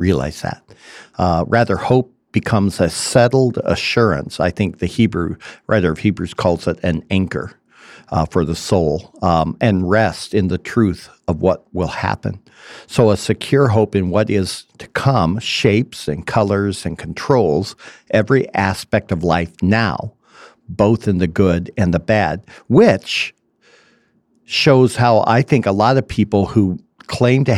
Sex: male